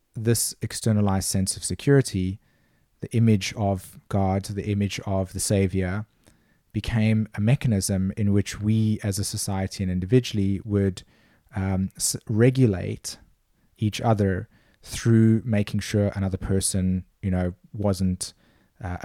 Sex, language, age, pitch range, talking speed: male, English, 30-49, 95-110 Hz, 125 wpm